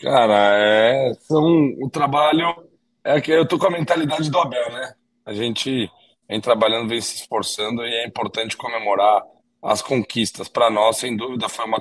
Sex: male